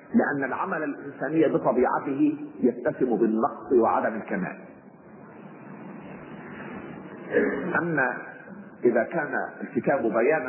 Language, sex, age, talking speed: Arabic, male, 40-59, 75 wpm